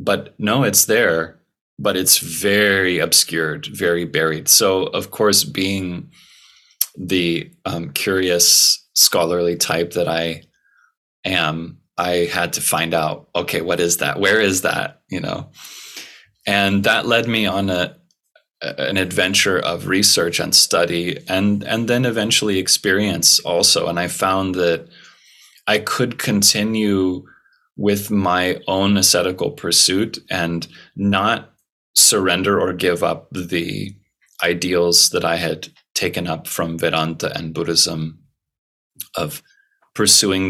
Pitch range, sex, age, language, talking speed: 85-100 Hz, male, 20-39, Dutch, 125 wpm